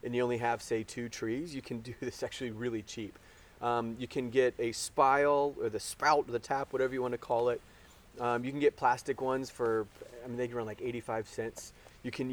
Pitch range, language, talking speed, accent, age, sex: 120-145 Hz, English, 240 wpm, American, 30-49, male